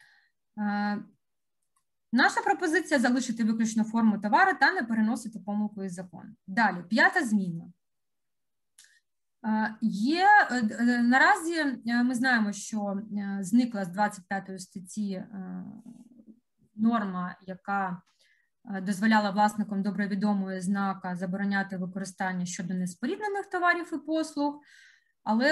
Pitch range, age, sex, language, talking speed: 200-265 Hz, 20-39, female, Ukrainian, 95 wpm